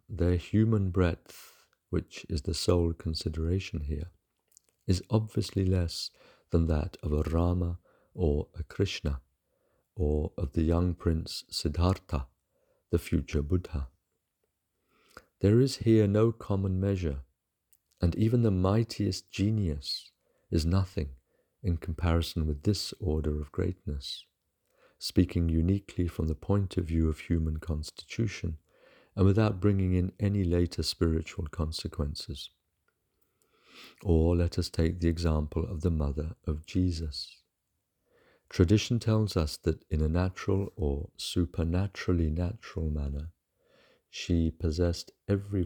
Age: 50-69